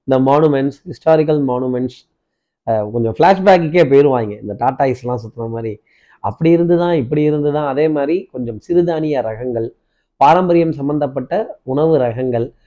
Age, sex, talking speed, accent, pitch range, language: 30-49, male, 130 wpm, native, 130-165 Hz, Tamil